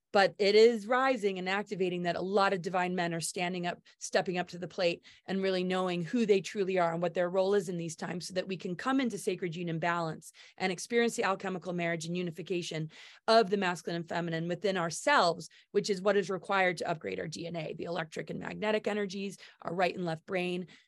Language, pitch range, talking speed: English, 180-215 Hz, 225 wpm